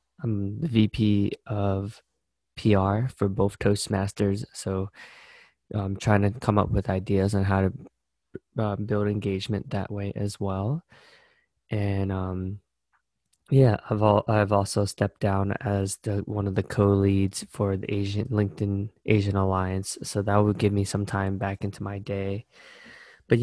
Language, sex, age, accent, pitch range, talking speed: English, male, 20-39, American, 100-110 Hz, 145 wpm